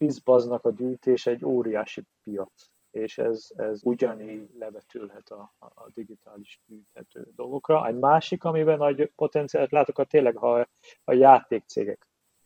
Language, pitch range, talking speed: Hungarian, 110-140 Hz, 130 wpm